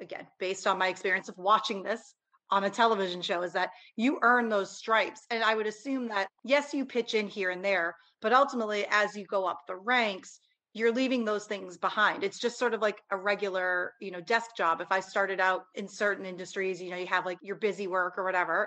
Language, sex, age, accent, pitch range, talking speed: English, female, 30-49, American, 185-220 Hz, 230 wpm